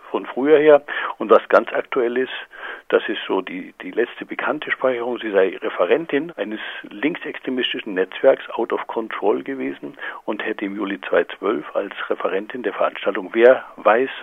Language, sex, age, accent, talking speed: German, male, 60-79, German, 155 wpm